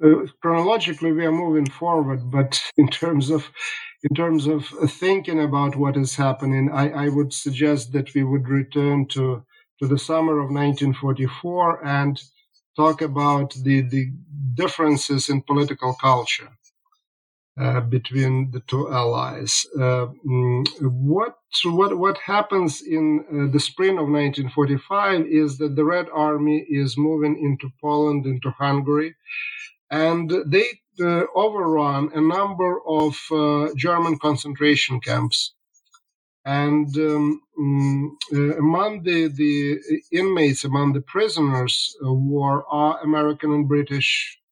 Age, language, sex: 50-69, English, male